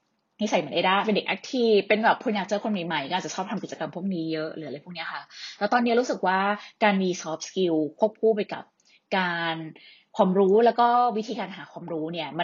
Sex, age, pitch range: female, 20-39, 155-210 Hz